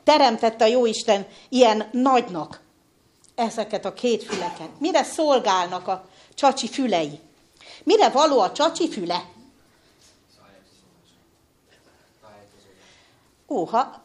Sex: female